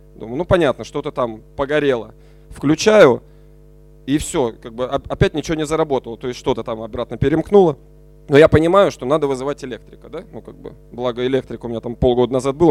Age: 20-39